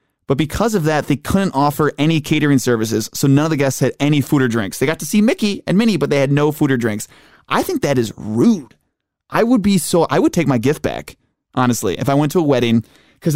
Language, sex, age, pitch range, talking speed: English, male, 20-39, 125-150 Hz, 255 wpm